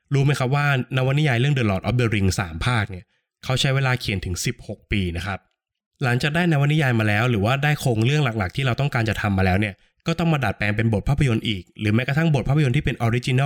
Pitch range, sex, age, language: 105-140 Hz, male, 20-39, Thai